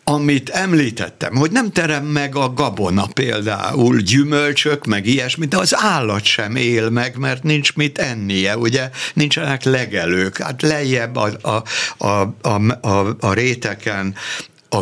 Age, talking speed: 60-79, 140 wpm